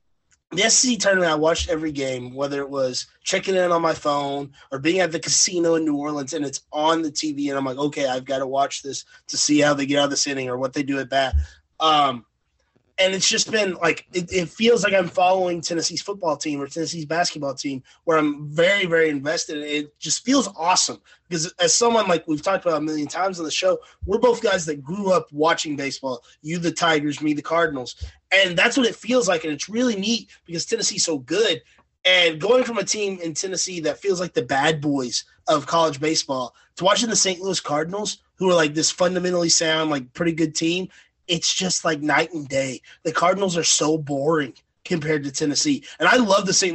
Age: 20-39